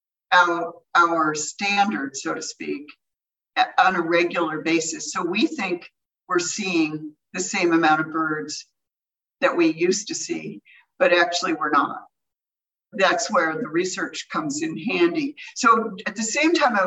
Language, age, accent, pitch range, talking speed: English, 60-79, American, 165-265 Hz, 145 wpm